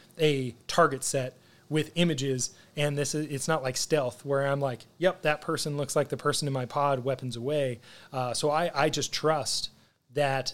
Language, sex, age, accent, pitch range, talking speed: English, male, 30-49, American, 130-165 Hz, 195 wpm